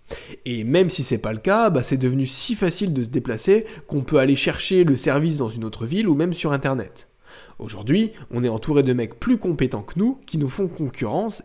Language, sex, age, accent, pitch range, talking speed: French, male, 20-39, French, 125-165 Hz, 225 wpm